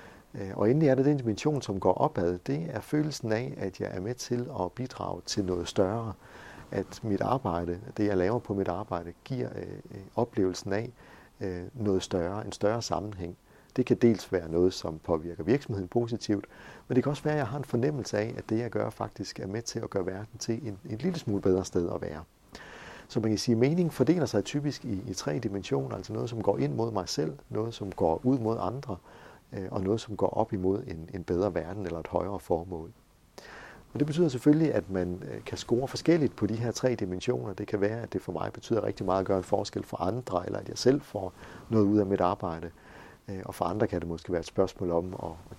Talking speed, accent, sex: 220 wpm, native, male